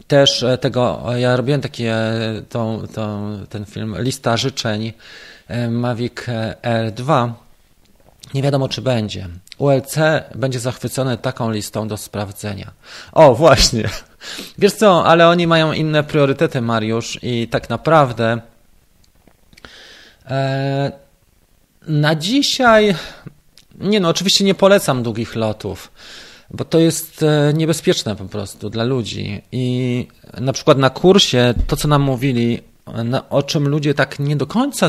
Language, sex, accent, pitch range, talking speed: Polish, male, native, 110-145 Hz, 120 wpm